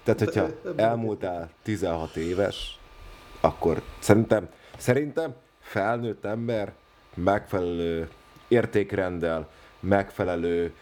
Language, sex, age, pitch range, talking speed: Hungarian, male, 30-49, 80-100 Hz, 70 wpm